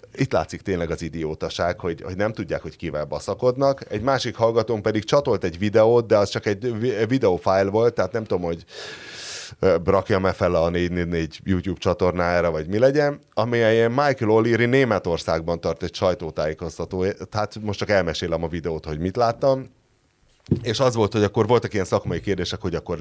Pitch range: 95-125 Hz